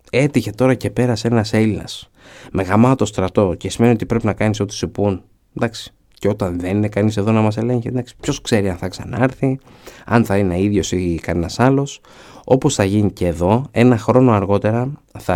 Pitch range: 95-120 Hz